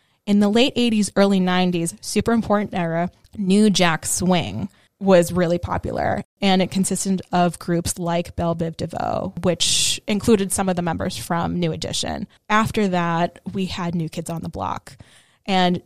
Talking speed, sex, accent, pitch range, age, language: 165 wpm, female, American, 175-215 Hz, 20-39, English